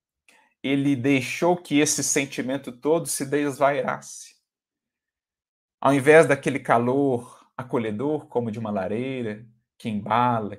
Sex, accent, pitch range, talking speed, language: male, Brazilian, 110-145 Hz, 110 wpm, Portuguese